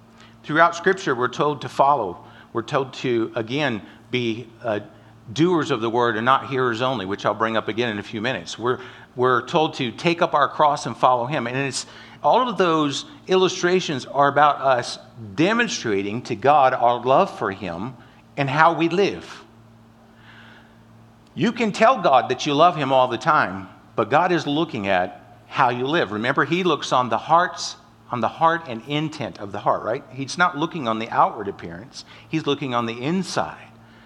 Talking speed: 185 wpm